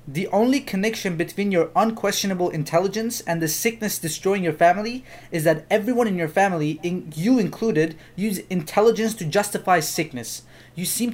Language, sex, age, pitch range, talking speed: Persian, male, 20-39, 160-210 Hz, 150 wpm